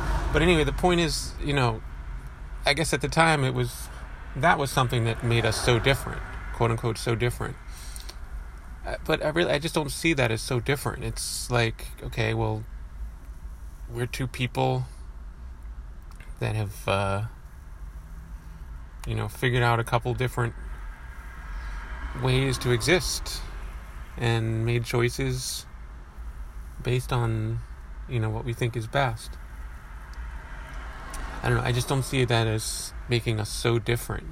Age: 30-49